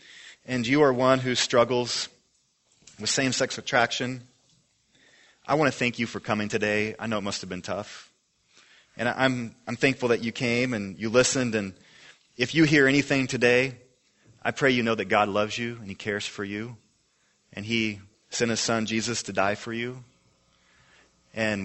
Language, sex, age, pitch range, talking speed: English, male, 30-49, 105-125 Hz, 175 wpm